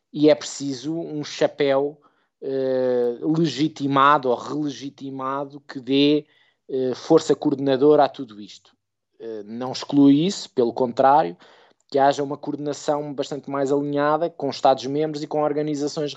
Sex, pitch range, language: male, 120-140 Hz, Portuguese